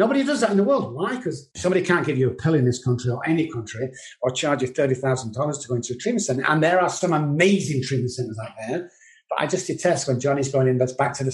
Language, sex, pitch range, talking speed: English, male, 115-135 Hz, 270 wpm